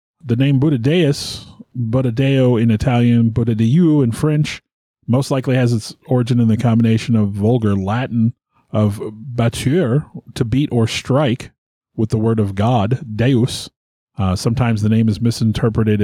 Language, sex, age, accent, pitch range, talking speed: English, male, 30-49, American, 110-140 Hz, 140 wpm